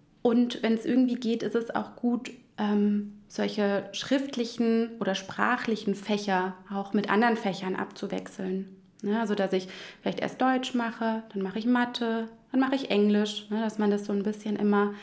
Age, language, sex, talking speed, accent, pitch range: 20-39, German, female, 175 wpm, German, 200-225 Hz